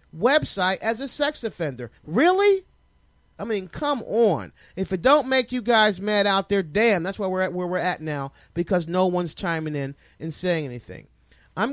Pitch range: 140-185 Hz